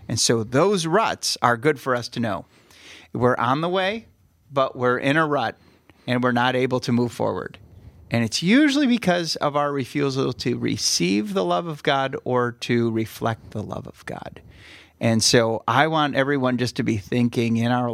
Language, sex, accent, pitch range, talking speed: English, male, American, 115-145 Hz, 190 wpm